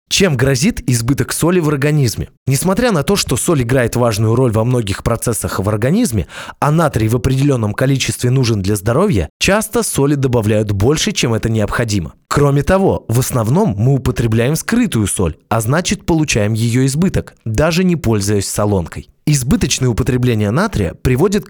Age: 20-39